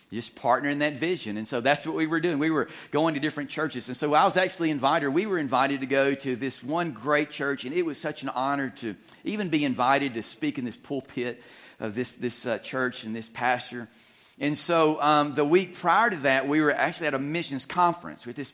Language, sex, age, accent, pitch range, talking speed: English, male, 40-59, American, 130-155 Hz, 240 wpm